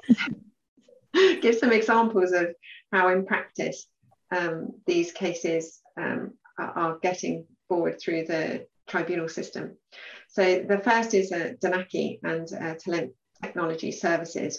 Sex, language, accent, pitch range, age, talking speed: female, English, British, 170-200 Hz, 40-59, 120 wpm